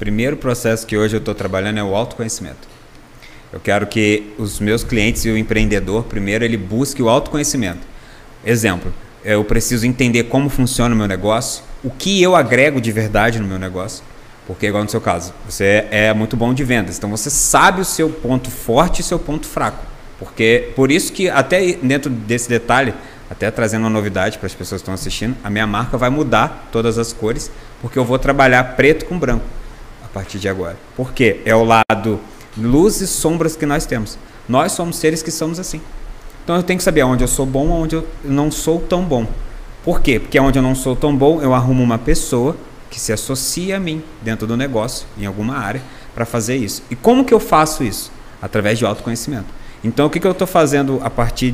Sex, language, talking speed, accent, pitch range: male, Portuguese, 205 wpm, Brazilian, 110-140 Hz